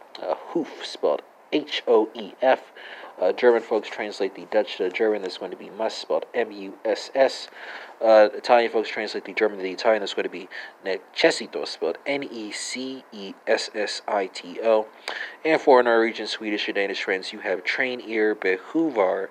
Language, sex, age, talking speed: English, male, 40-59, 185 wpm